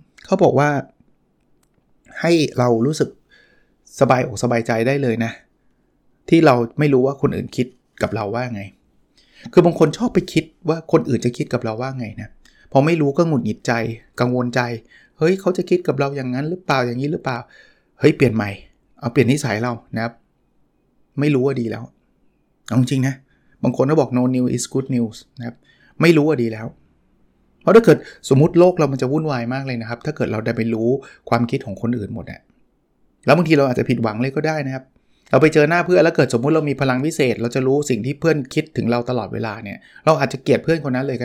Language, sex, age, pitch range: Thai, male, 20-39, 120-155 Hz